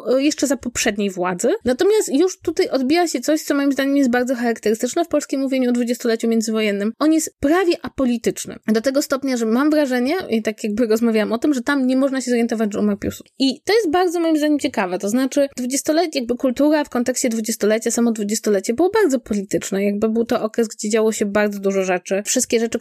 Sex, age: female, 20-39